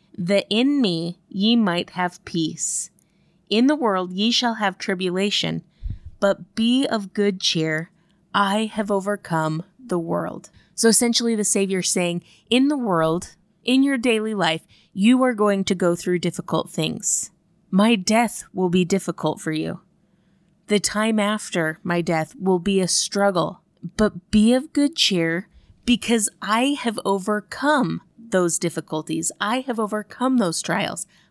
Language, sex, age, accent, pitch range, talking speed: English, female, 20-39, American, 180-225 Hz, 145 wpm